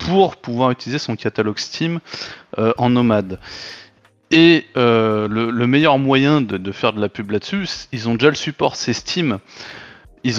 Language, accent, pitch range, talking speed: French, French, 110-160 Hz, 175 wpm